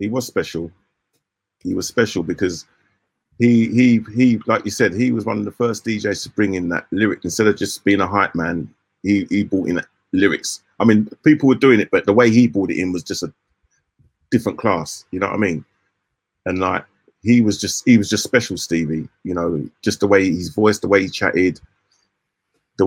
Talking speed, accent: 215 wpm, British